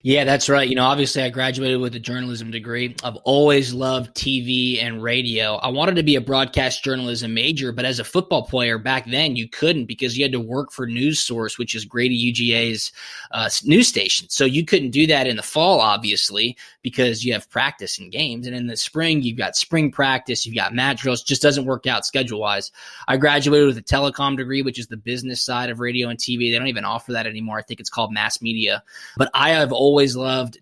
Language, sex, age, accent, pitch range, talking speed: English, male, 20-39, American, 120-140 Hz, 225 wpm